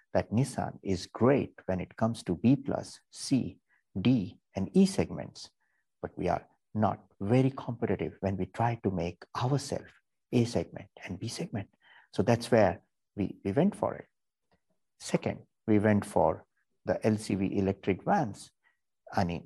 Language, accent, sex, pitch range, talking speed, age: English, Indian, male, 95-125 Hz, 150 wpm, 60-79